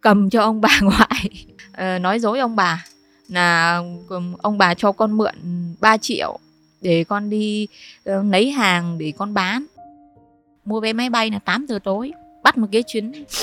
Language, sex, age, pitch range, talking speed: Vietnamese, female, 20-39, 190-230 Hz, 175 wpm